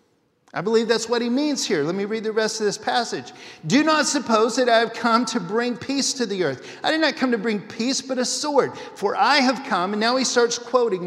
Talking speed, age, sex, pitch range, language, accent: 255 wpm, 50-69, male, 200-255 Hz, English, American